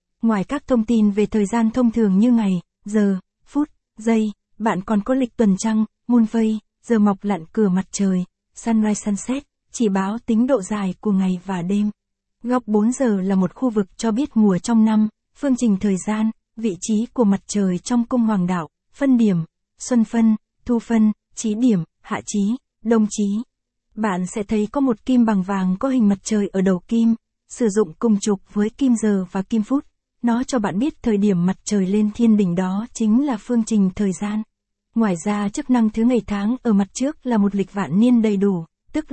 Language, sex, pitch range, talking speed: Vietnamese, female, 200-235 Hz, 210 wpm